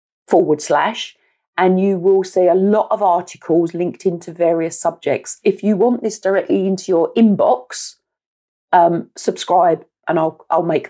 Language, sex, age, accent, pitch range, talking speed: English, female, 40-59, British, 175-205 Hz, 155 wpm